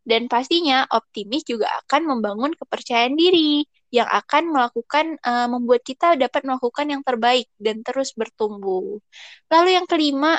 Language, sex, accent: Indonesian, female, native